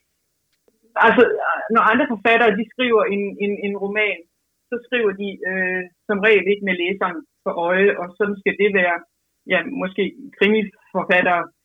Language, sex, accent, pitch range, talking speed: Danish, female, native, 180-210 Hz, 150 wpm